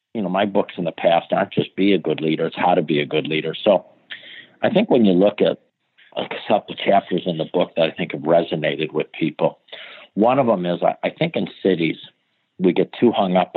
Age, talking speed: 50-69, 235 wpm